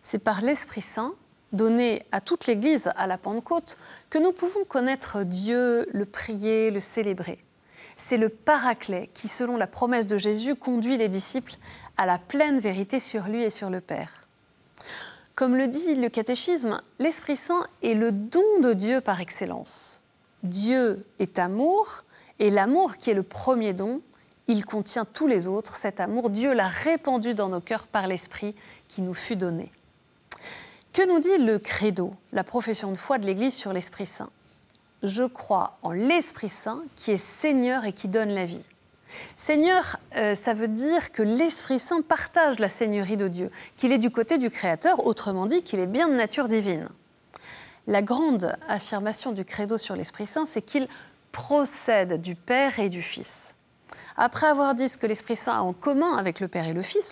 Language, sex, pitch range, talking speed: French, female, 200-270 Hz, 175 wpm